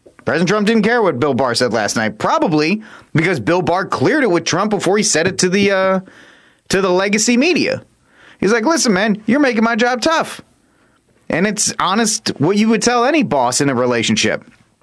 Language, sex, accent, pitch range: English, male, American, 145-220 Hz